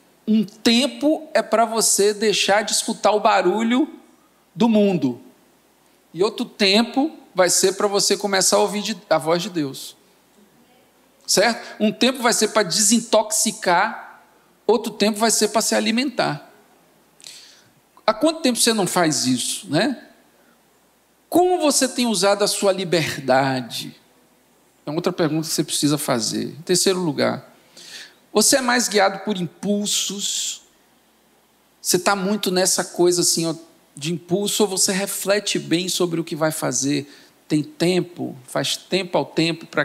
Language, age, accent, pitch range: Portuguese, 50-69, Brazilian, 165-225 Hz